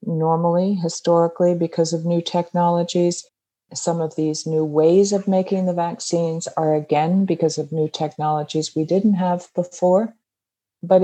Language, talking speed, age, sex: English, 140 wpm, 50-69, female